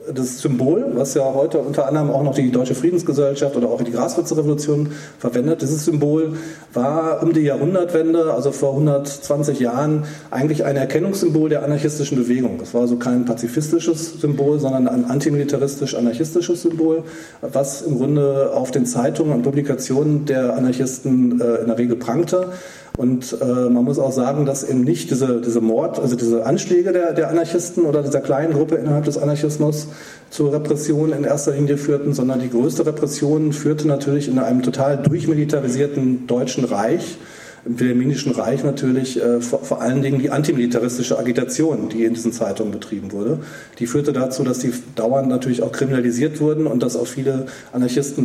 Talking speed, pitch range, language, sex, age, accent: 165 wpm, 125-150 Hz, German, male, 40-59, German